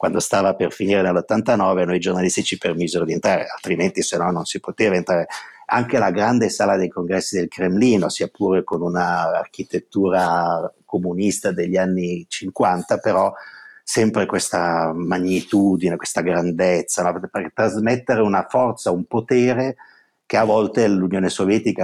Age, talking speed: 50-69, 140 wpm